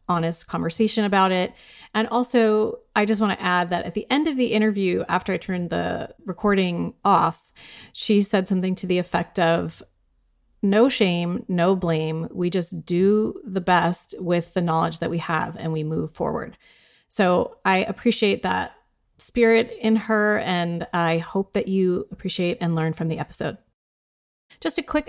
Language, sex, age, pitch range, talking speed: English, female, 30-49, 175-210 Hz, 170 wpm